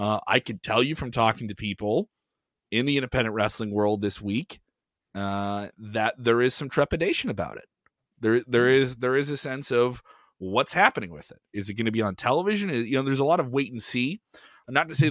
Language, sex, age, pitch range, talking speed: English, male, 30-49, 110-140 Hz, 225 wpm